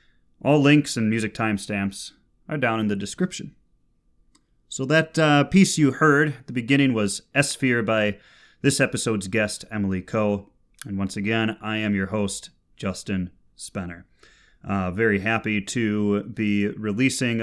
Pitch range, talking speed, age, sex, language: 95-120 Hz, 145 wpm, 30-49, male, English